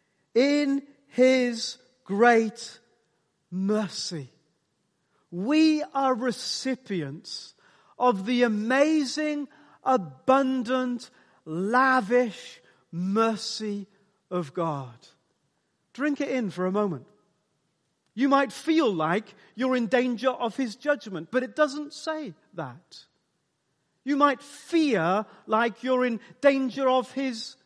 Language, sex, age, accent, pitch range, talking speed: English, male, 40-59, British, 195-260 Hz, 100 wpm